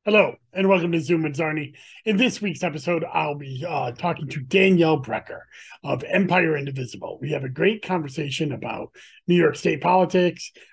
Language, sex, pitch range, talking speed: English, male, 145-190 Hz, 175 wpm